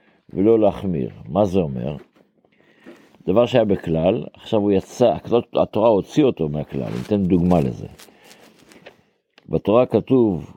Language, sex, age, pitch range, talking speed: Hebrew, male, 60-79, 90-110 Hz, 120 wpm